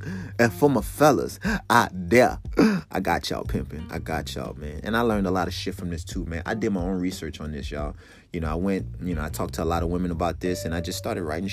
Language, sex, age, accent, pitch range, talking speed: English, male, 20-39, American, 90-135 Hz, 275 wpm